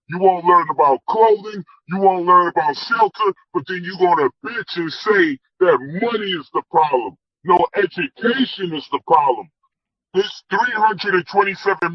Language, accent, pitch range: English, American, 165-240 Hz